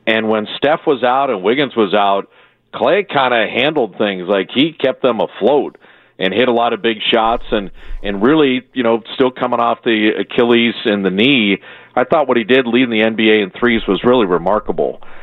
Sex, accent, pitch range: male, American, 105-125 Hz